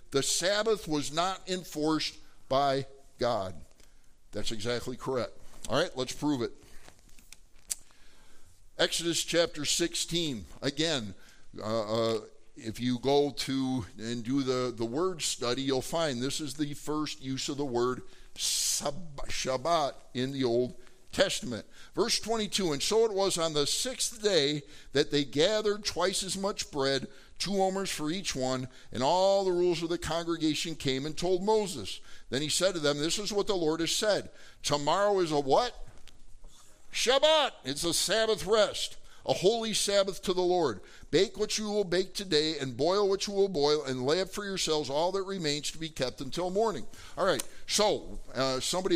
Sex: male